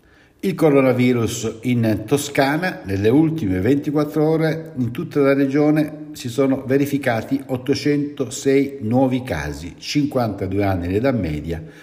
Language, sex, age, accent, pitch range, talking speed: Italian, male, 60-79, native, 95-135 Hz, 110 wpm